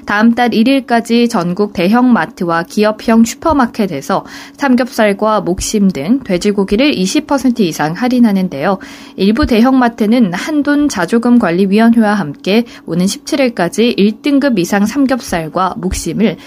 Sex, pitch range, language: female, 190-265 Hz, Korean